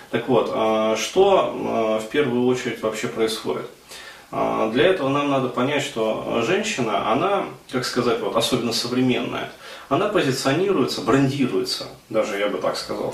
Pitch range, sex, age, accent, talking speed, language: 110-130 Hz, male, 20-39, native, 130 wpm, Russian